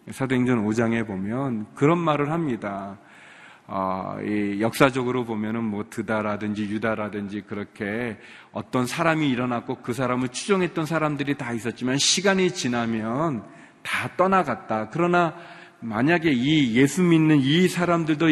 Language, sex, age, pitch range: Korean, male, 40-59, 115-165 Hz